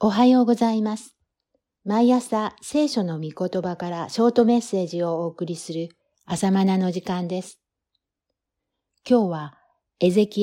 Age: 60-79